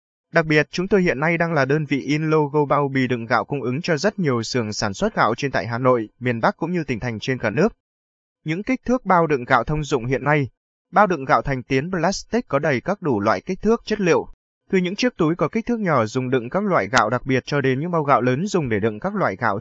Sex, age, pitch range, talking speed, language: male, 20-39, 125-170 Hz, 275 wpm, Vietnamese